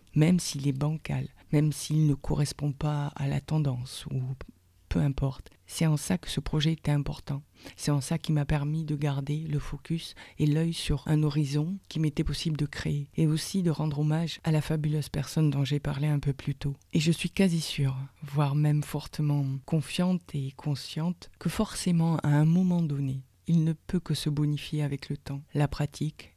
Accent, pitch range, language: French, 140-160 Hz, French